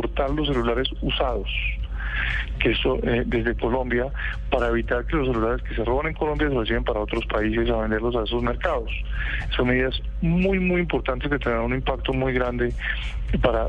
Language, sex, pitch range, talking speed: Spanish, male, 120-150 Hz, 175 wpm